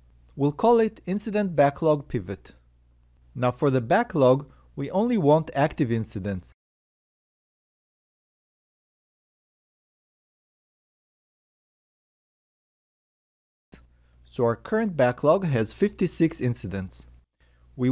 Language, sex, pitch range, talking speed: English, male, 95-150 Hz, 75 wpm